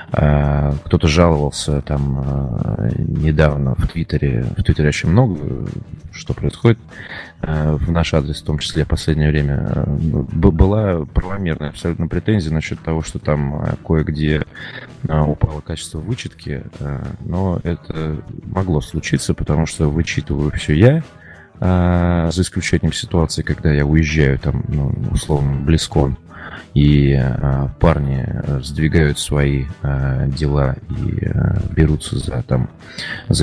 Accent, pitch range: native, 75-85 Hz